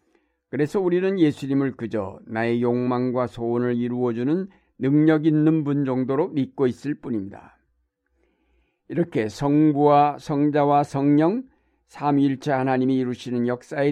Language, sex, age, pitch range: Korean, male, 60-79, 115-155 Hz